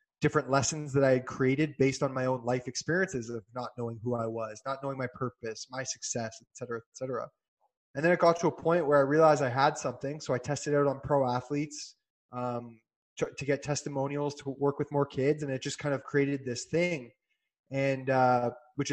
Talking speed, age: 220 wpm, 20-39